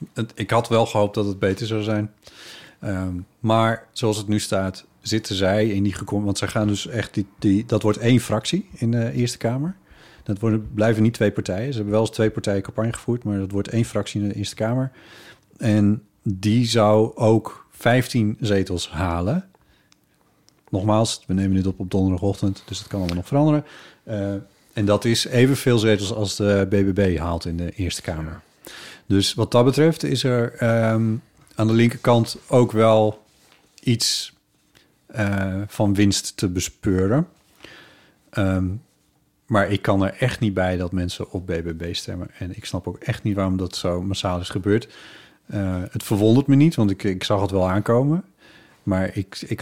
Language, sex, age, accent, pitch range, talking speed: Dutch, male, 40-59, Dutch, 95-115 Hz, 180 wpm